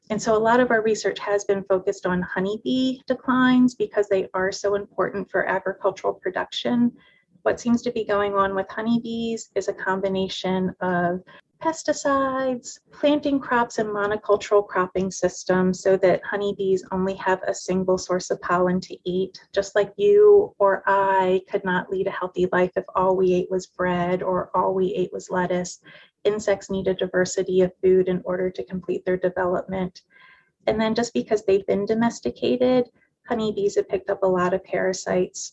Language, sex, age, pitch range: English, female, 30-49, 185-220 Hz